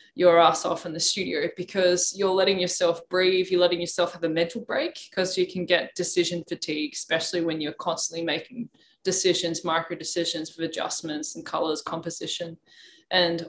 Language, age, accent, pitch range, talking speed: English, 20-39, Australian, 170-190 Hz, 170 wpm